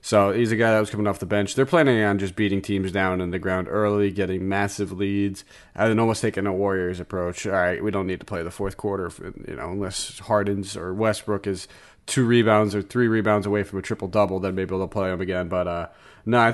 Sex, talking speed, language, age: male, 240 wpm, English, 30-49